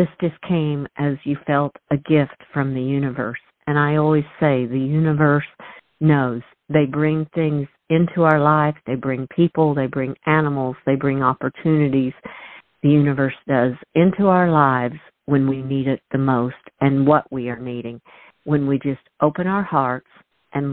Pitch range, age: 130-155 Hz, 50-69